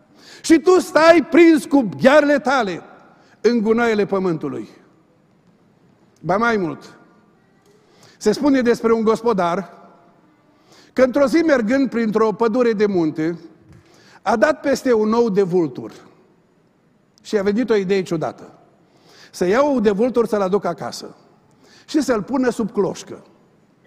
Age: 50-69